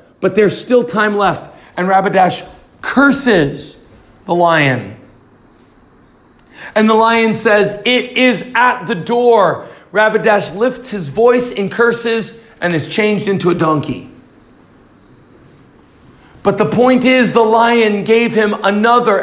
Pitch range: 200-245 Hz